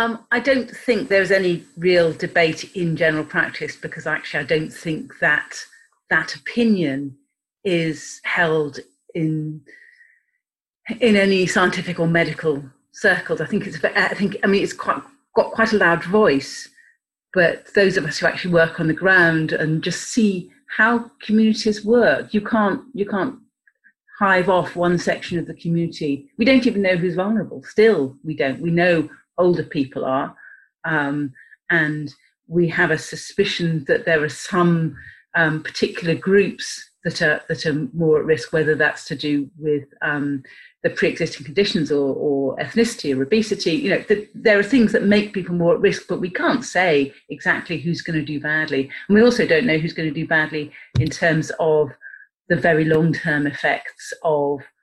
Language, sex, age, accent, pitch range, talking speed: English, female, 40-59, British, 155-205 Hz, 175 wpm